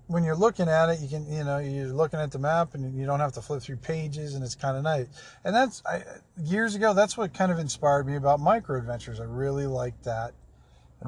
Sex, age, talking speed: male, 50-69, 245 wpm